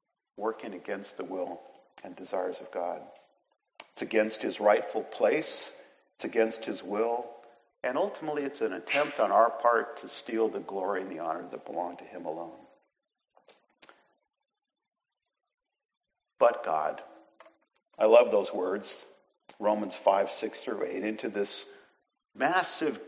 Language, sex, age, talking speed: English, male, 50-69, 135 wpm